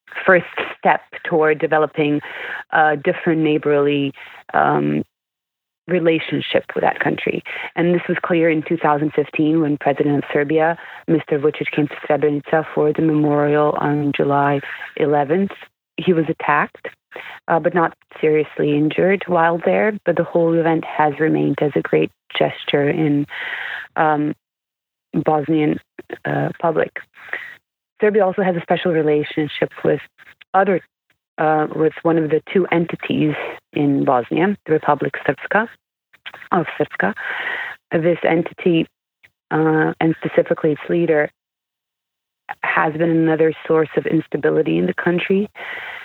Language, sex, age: English, female, 30-49